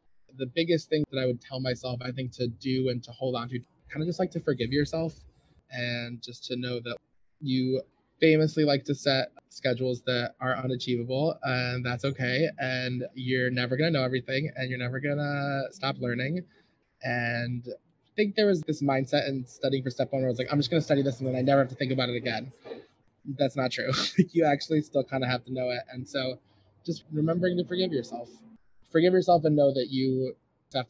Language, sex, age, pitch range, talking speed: English, male, 20-39, 125-150 Hz, 220 wpm